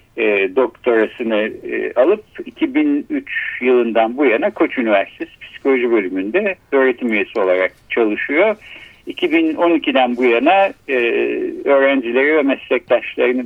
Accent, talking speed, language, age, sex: native, 90 wpm, Turkish, 60-79, male